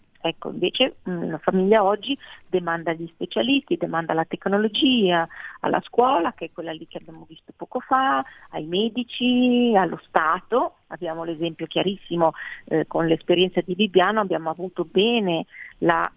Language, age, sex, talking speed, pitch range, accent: Italian, 40-59, female, 140 wpm, 175-200 Hz, native